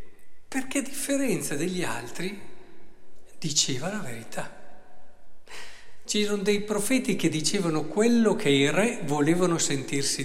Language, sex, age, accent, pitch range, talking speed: Italian, male, 50-69, native, 140-205 Hz, 115 wpm